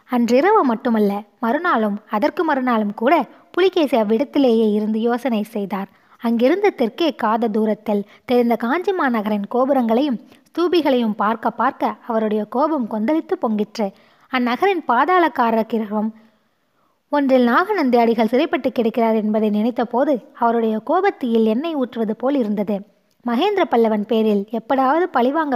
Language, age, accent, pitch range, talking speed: Tamil, 20-39, native, 220-275 Hz, 105 wpm